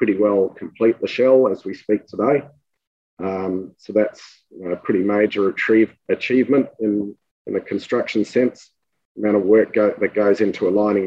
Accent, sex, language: Australian, male, English